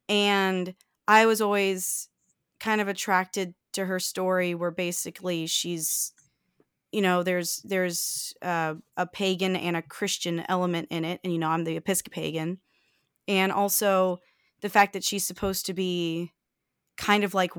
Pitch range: 175-205 Hz